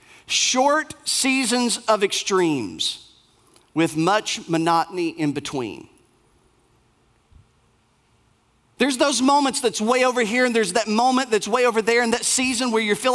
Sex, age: male, 40-59